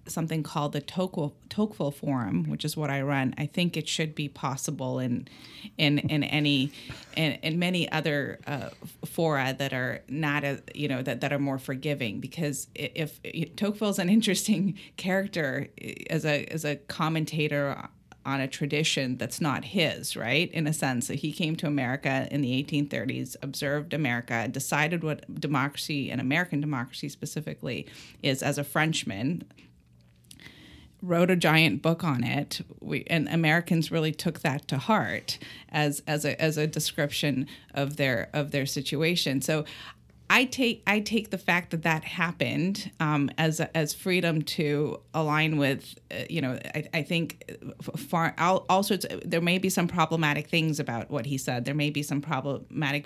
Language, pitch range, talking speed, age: English, 140-165 Hz, 170 wpm, 30-49